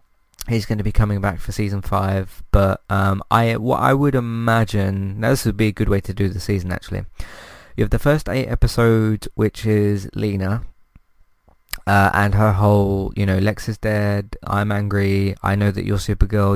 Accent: British